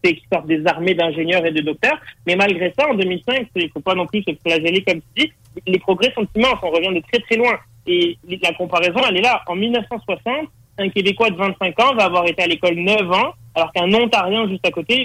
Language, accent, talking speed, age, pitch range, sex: French, French, 245 wpm, 30-49, 165-215 Hz, male